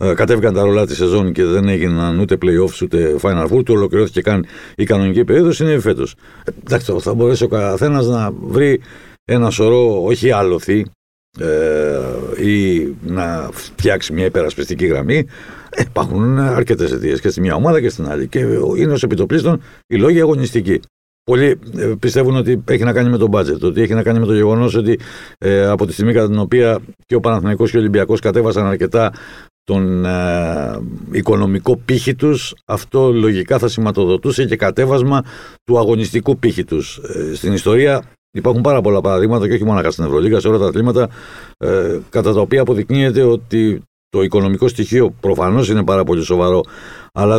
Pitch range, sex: 100-120 Hz, male